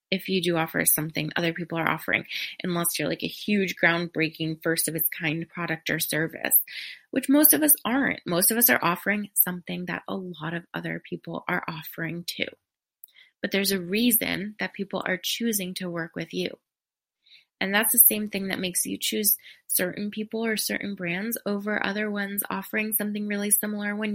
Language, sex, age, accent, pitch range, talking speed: English, female, 20-39, American, 180-225 Hz, 190 wpm